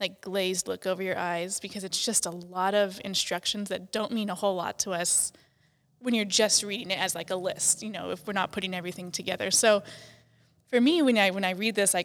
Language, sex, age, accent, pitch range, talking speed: English, female, 10-29, American, 180-220 Hz, 240 wpm